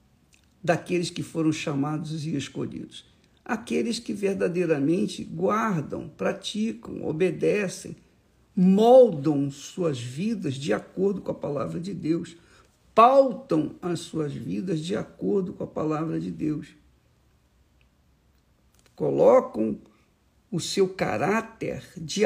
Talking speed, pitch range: 100 wpm, 150-190 Hz